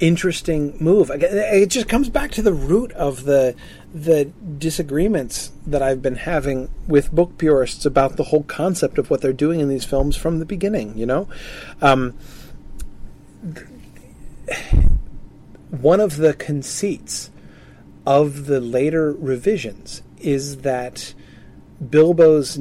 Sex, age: male, 40-59